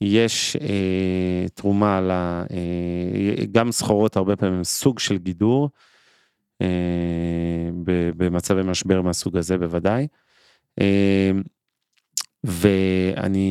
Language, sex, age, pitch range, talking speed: Hebrew, male, 30-49, 95-105 Hz, 95 wpm